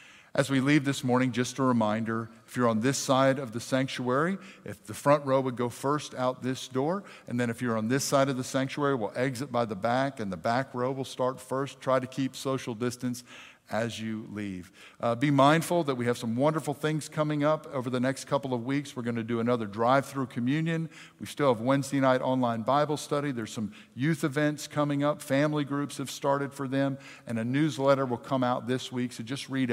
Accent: American